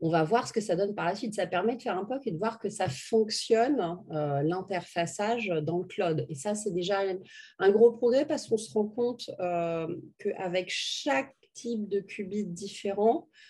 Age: 30-49